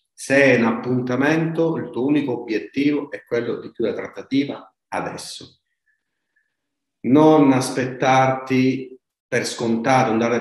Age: 40-59